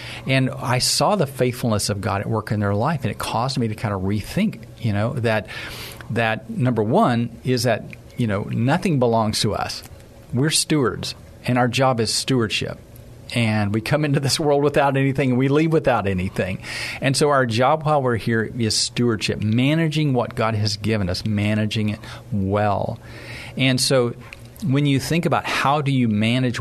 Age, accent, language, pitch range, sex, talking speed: 40-59, American, English, 110-130 Hz, male, 185 wpm